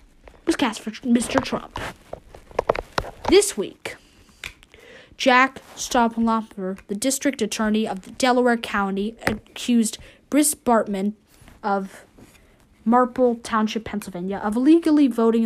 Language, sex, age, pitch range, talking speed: English, female, 20-39, 210-255 Hz, 100 wpm